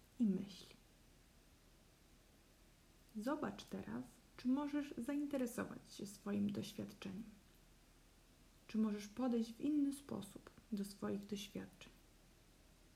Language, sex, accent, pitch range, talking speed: Polish, female, native, 205-245 Hz, 90 wpm